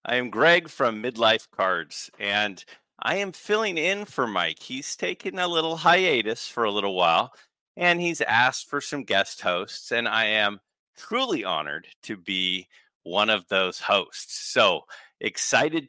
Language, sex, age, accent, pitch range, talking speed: English, male, 40-59, American, 105-145 Hz, 160 wpm